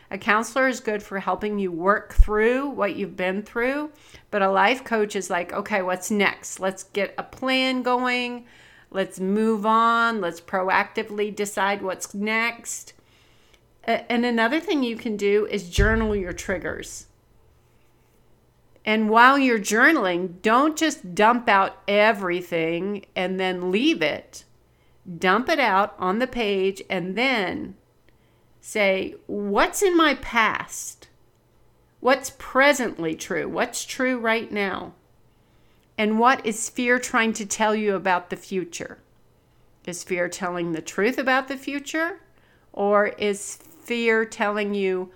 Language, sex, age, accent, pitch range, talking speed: English, female, 40-59, American, 190-235 Hz, 135 wpm